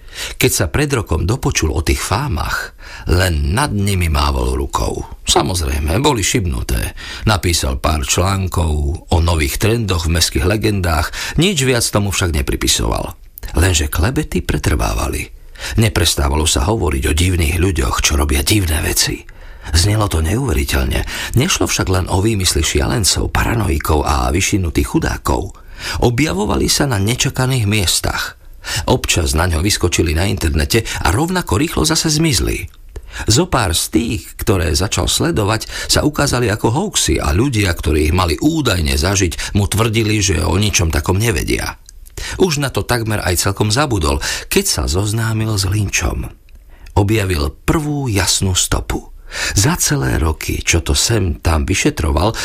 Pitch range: 80-110 Hz